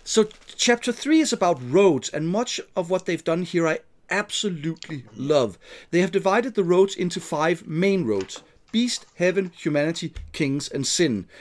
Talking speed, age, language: 170 wpm, 40-59, English